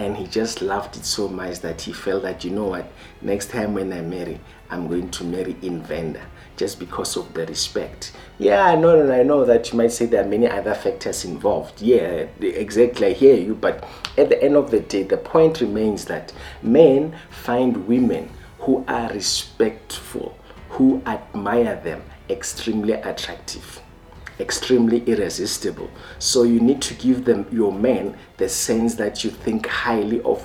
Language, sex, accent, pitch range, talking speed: English, male, South African, 100-125 Hz, 175 wpm